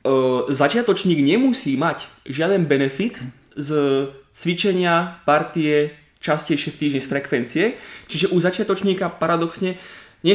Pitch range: 135-170 Hz